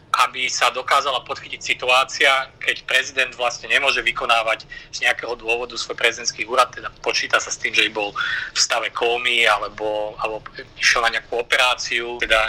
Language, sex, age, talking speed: Slovak, male, 30-49, 160 wpm